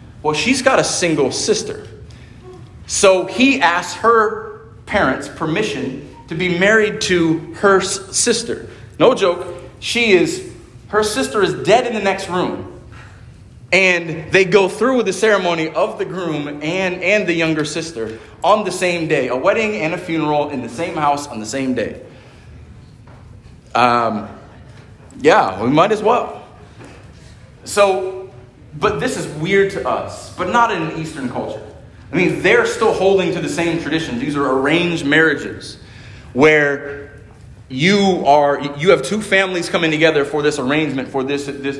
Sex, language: male, English